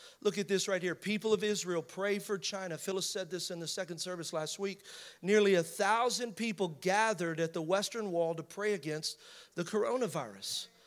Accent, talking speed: American, 190 wpm